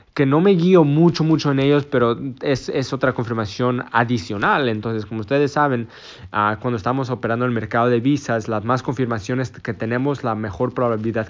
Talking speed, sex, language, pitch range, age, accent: 180 wpm, male, Spanish, 115-140 Hz, 20-39, Mexican